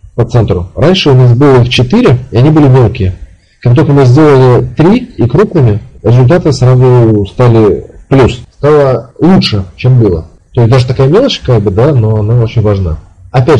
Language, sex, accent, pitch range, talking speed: Russian, male, native, 105-135 Hz, 175 wpm